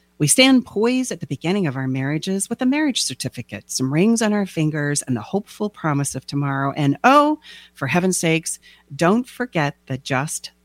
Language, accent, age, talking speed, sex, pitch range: English, American, 40-59, 185 wpm, female, 130-215 Hz